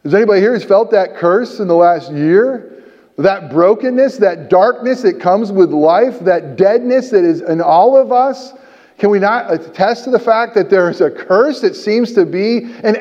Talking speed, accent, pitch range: 205 wpm, American, 180-245 Hz